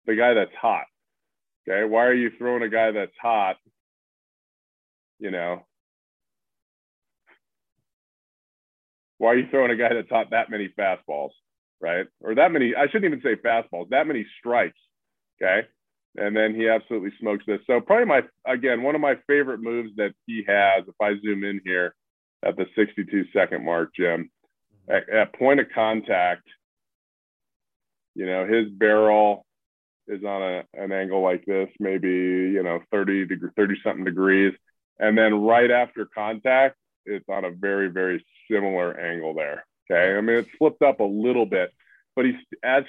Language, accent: English, American